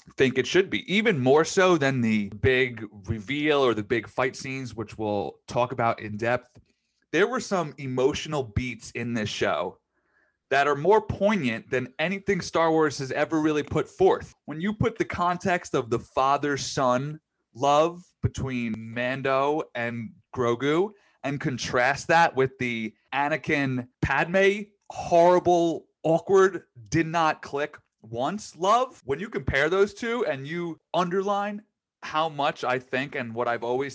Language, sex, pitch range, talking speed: English, male, 125-175 Hz, 150 wpm